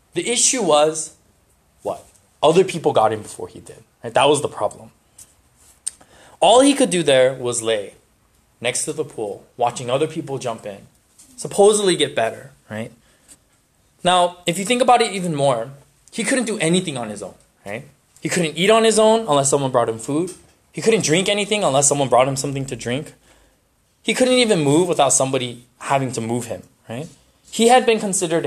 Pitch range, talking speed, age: 130-195 Hz, 185 wpm, 20-39